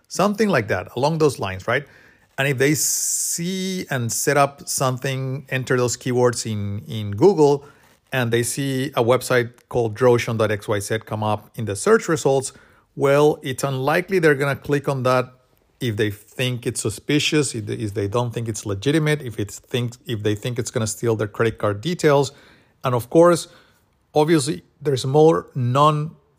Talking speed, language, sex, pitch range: 165 wpm, English, male, 115-150 Hz